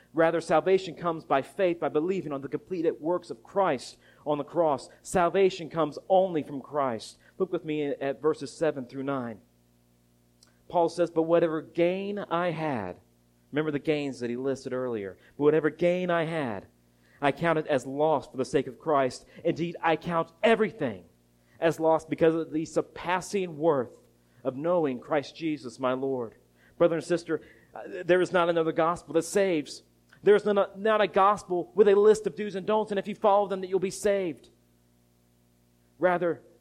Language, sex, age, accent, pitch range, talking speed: English, male, 40-59, American, 125-165 Hz, 175 wpm